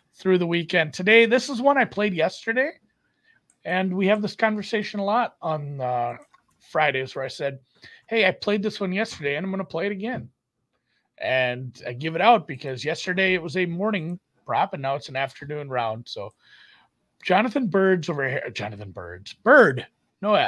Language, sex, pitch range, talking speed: English, male, 125-185 Hz, 190 wpm